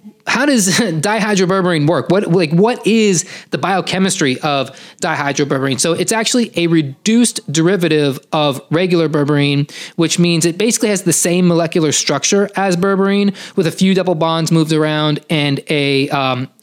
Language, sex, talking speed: English, male, 150 wpm